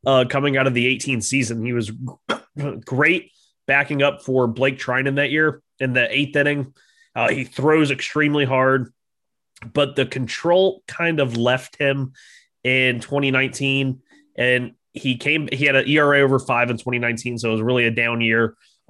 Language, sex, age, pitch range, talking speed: English, male, 20-39, 115-140 Hz, 170 wpm